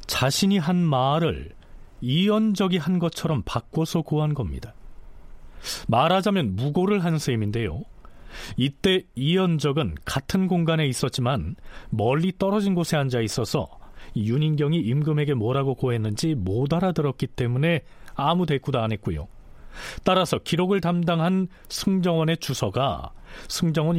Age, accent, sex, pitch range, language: 40-59, native, male, 115-170 Hz, Korean